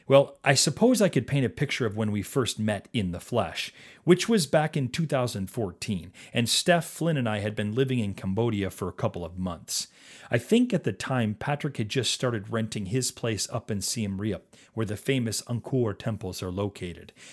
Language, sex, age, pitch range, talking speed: English, male, 40-59, 105-140 Hz, 205 wpm